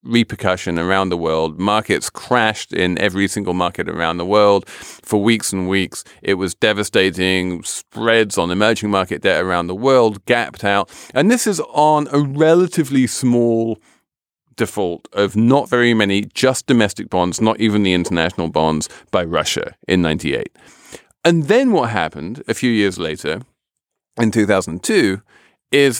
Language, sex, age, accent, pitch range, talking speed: English, male, 40-59, British, 95-130 Hz, 150 wpm